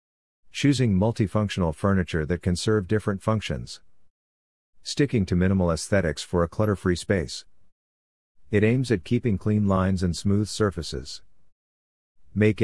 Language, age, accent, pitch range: English, 50-69, American, 85-100 Hz